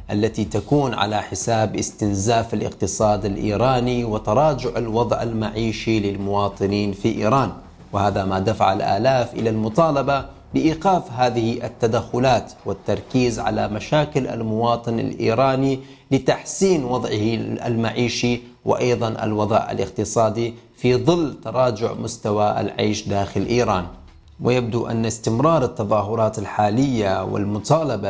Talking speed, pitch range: 100 wpm, 100-120 Hz